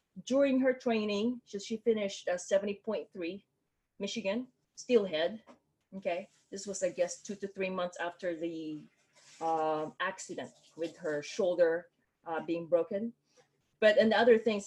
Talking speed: 135 wpm